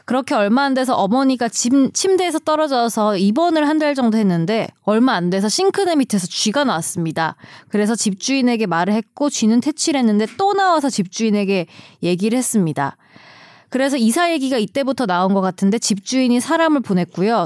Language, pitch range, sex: Korean, 200-275 Hz, female